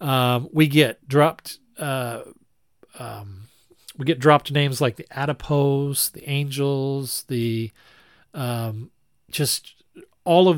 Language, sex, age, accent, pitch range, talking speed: English, male, 40-59, American, 125-165 Hz, 115 wpm